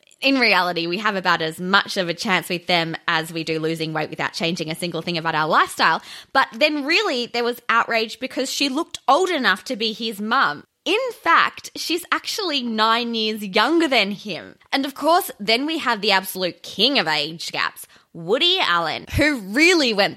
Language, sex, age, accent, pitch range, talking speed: English, female, 20-39, Australian, 185-280 Hz, 195 wpm